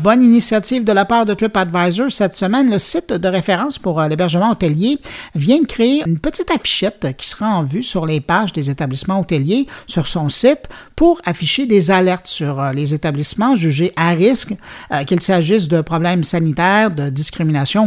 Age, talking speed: 50-69, 175 wpm